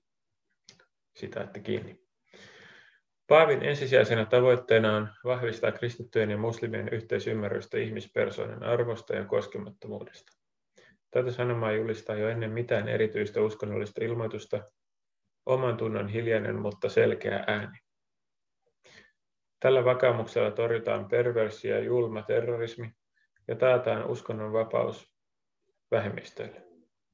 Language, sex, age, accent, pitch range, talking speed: Finnish, male, 30-49, native, 110-125 Hz, 90 wpm